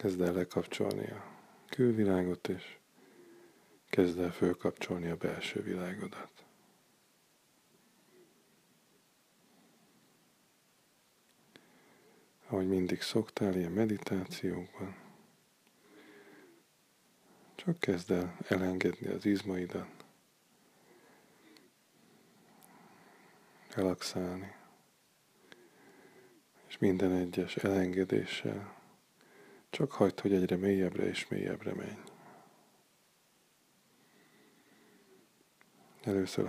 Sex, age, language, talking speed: male, 20-39, Hungarian, 60 wpm